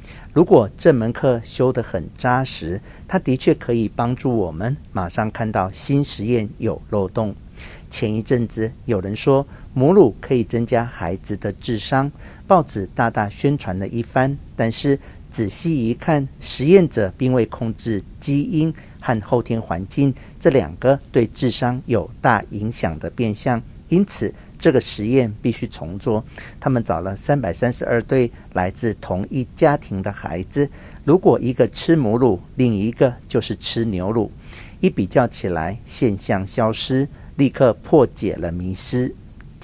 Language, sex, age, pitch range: Chinese, male, 50-69, 100-130 Hz